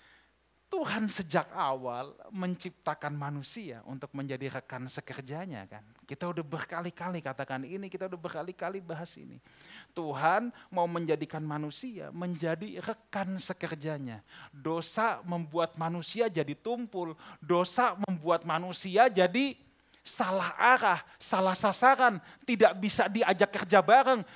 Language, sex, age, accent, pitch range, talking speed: Indonesian, male, 30-49, native, 170-260 Hz, 110 wpm